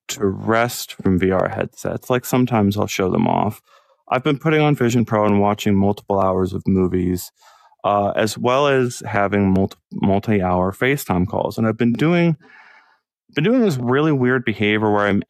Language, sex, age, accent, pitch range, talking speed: English, male, 30-49, American, 100-125 Hz, 165 wpm